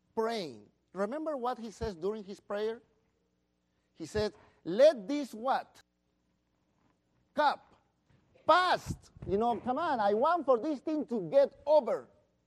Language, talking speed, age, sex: English, 130 wpm, 50-69, male